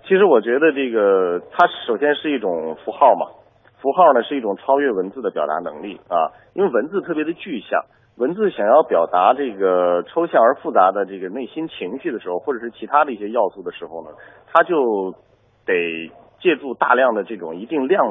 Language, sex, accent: Chinese, male, native